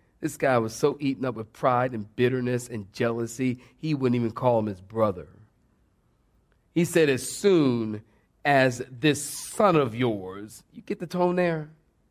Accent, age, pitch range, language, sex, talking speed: American, 40-59, 120-160 Hz, English, male, 165 wpm